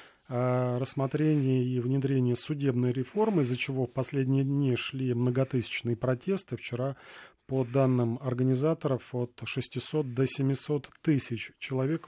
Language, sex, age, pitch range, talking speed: Russian, male, 30-49, 125-150 Hz, 115 wpm